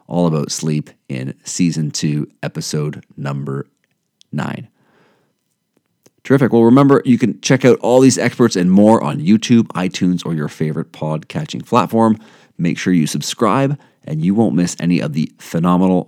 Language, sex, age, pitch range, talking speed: English, male, 40-59, 85-115 Hz, 155 wpm